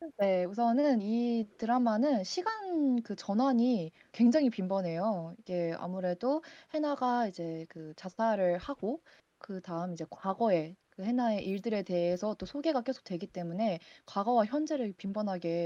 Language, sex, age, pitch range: Korean, female, 20-39, 175-240 Hz